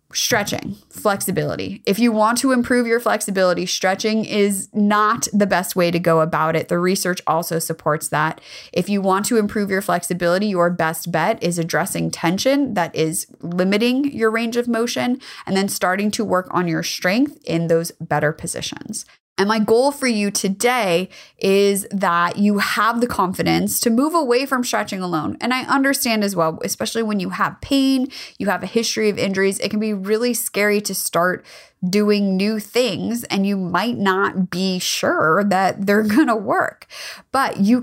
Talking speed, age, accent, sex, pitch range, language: 180 wpm, 20-39, American, female, 185-235 Hz, English